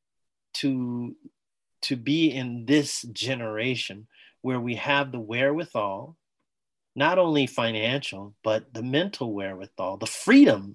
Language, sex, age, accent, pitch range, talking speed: English, male, 30-49, American, 120-160 Hz, 110 wpm